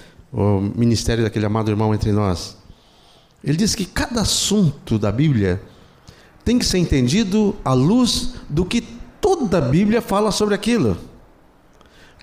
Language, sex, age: Portuguese, male, 50-69